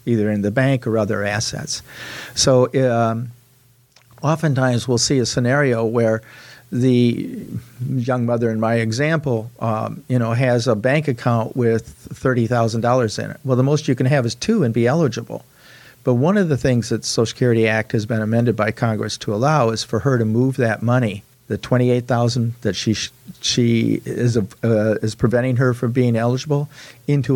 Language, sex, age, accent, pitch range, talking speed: English, male, 50-69, American, 115-130 Hz, 180 wpm